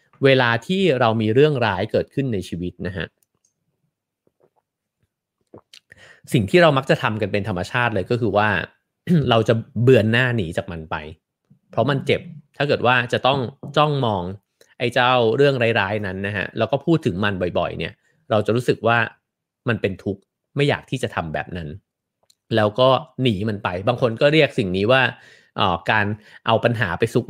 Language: English